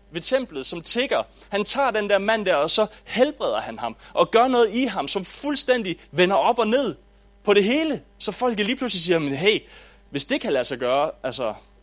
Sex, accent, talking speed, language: male, Danish, 220 wpm, English